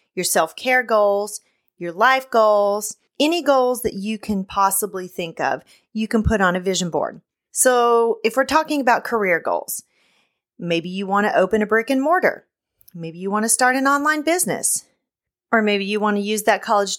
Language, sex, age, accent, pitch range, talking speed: English, female, 40-59, American, 200-240 Hz, 185 wpm